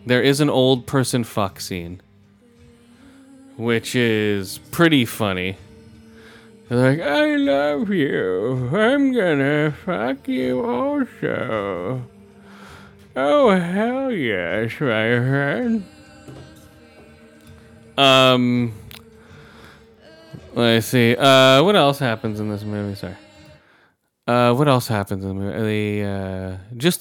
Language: English